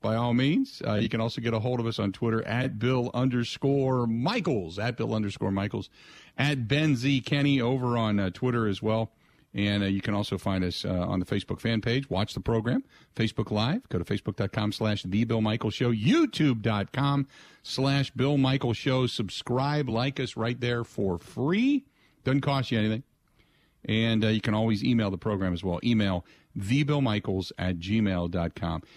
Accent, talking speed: American, 185 wpm